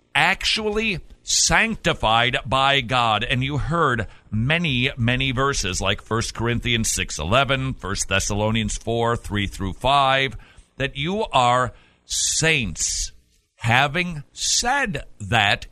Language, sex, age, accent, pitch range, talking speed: English, male, 50-69, American, 105-145 Hz, 105 wpm